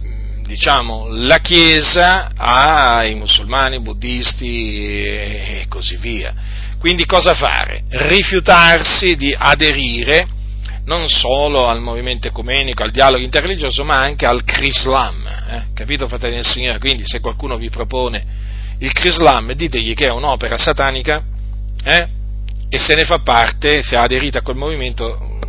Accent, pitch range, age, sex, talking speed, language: native, 100-130 Hz, 40-59, male, 130 wpm, Italian